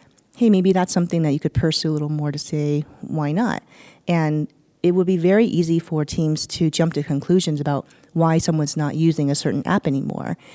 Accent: American